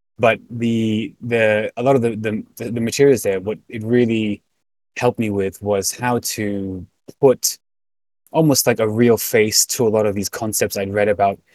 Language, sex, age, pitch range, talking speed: English, male, 20-39, 100-120 Hz, 180 wpm